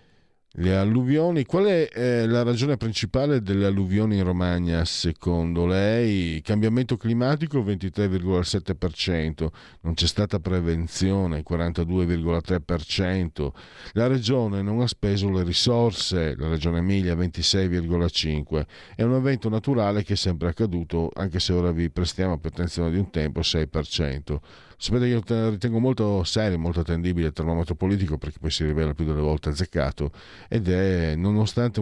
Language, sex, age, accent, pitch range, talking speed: Italian, male, 50-69, native, 85-105 Hz, 145 wpm